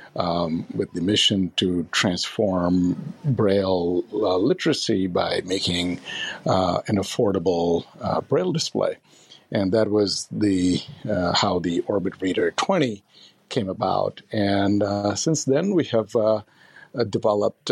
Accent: American